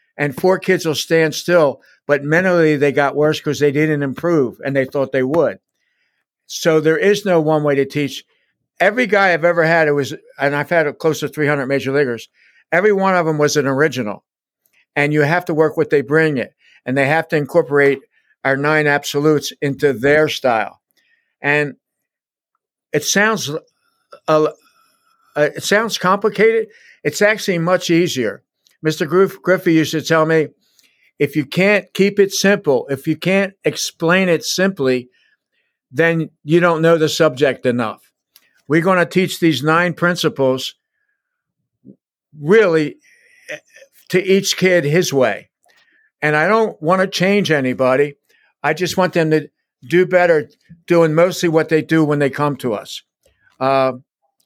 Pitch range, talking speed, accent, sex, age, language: 145-185 Hz, 160 wpm, American, male, 60-79, English